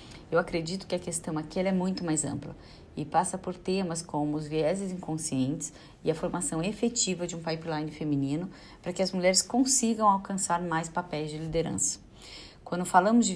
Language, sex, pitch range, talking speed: Portuguese, female, 155-200 Hz, 180 wpm